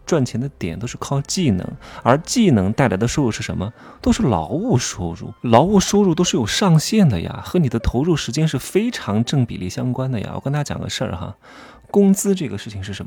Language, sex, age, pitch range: Chinese, male, 20-39, 100-145 Hz